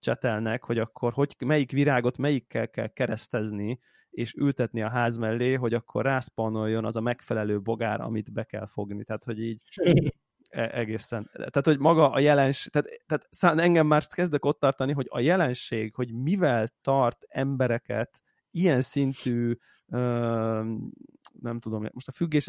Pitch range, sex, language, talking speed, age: 115-145 Hz, male, Hungarian, 145 wpm, 30-49